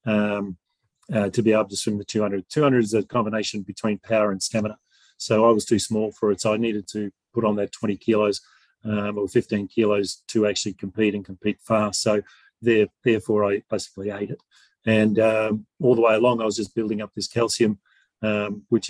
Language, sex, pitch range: English, male, 105-115 Hz